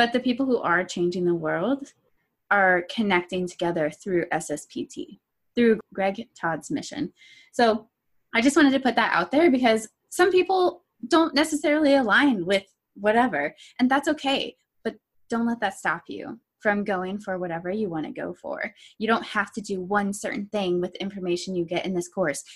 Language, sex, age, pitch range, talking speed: English, female, 20-39, 180-235 Hz, 180 wpm